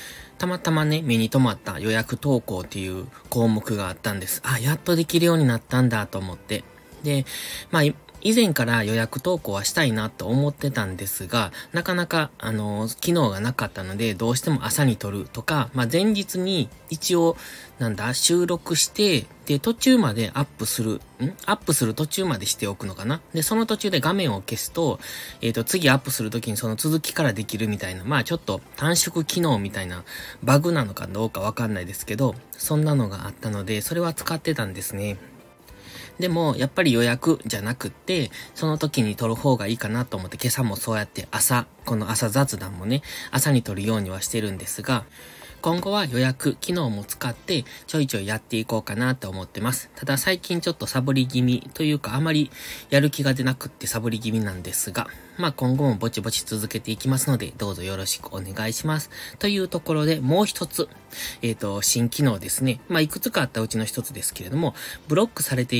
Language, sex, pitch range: Japanese, male, 110-150 Hz